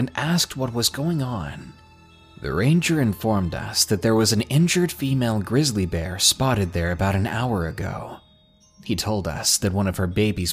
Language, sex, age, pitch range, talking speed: English, male, 20-39, 95-135 Hz, 180 wpm